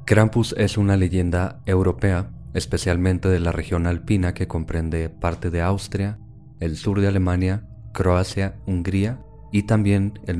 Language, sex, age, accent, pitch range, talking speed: Spanish, male, 30-49, Mexican, 85-100 Hz, 140 wpm